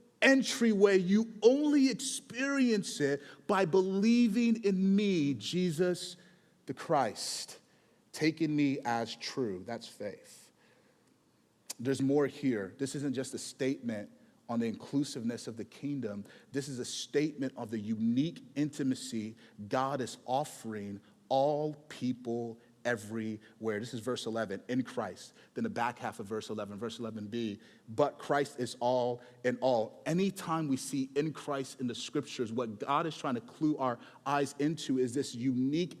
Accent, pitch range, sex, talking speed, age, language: American, 125-185 Hz, male, 145 wpm, 30-49, English